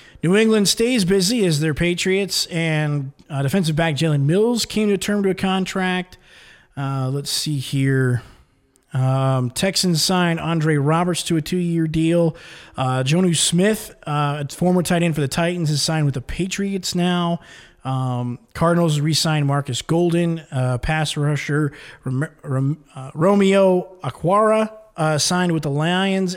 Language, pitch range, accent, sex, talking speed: English, 145-185 Hz, American, male, 145 wpm